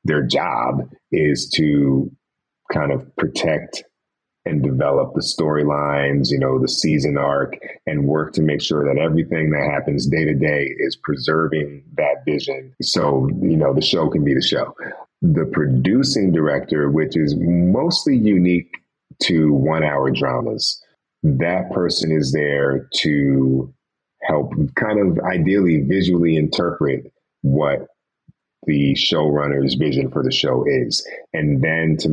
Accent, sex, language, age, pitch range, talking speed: American, male, English, 30-49, 70-80 Hz, 140 wpm